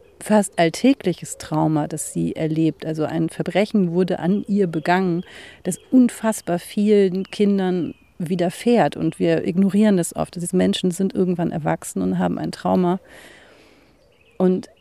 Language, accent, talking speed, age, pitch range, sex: German, German, 135 wpm, 40-59, 170-200 Hz, female